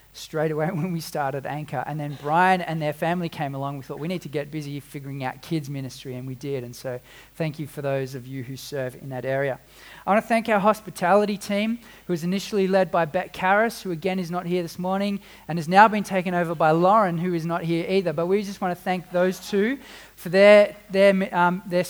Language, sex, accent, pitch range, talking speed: English, male, Australian, 155-195 Hz, 240 wpm